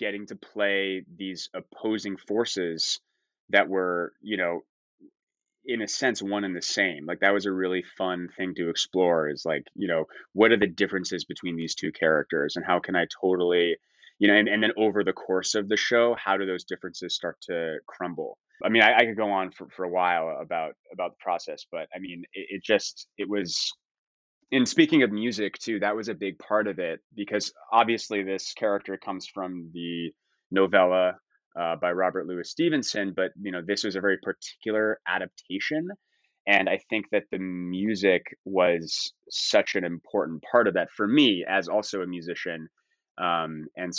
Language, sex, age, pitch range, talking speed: English, male, 20-39, 90-110 Hz, 190 wpm